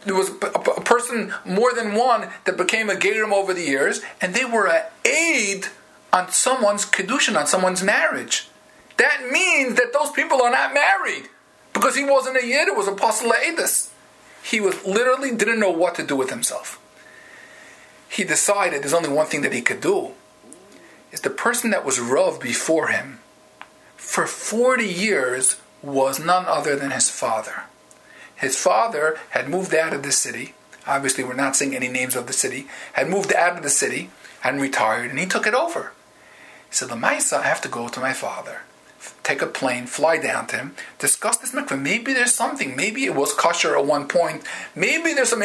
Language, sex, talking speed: English, male, 190 wpm